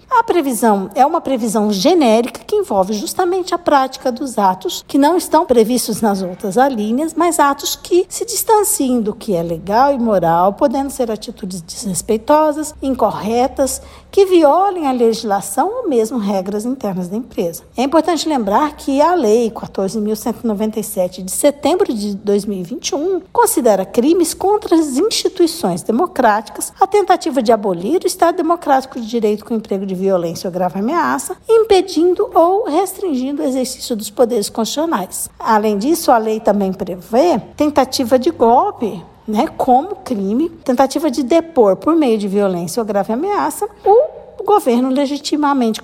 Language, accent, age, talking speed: Portuguese, Brazilian, 60-79, 150 wpm